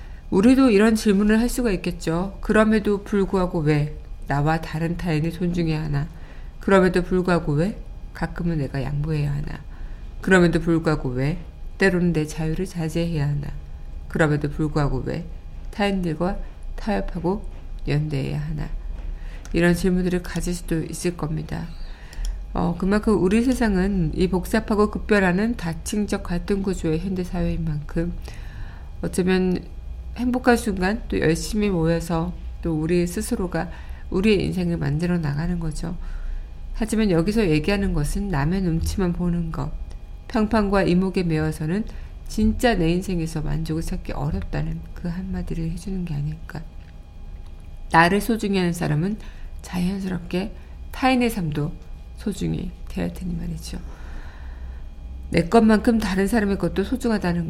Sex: female